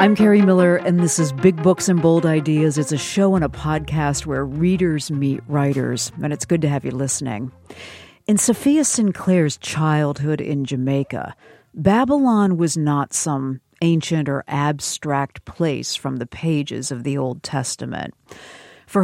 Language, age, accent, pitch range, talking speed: English, 50-69, American, 140-180 Hz, 160 wpm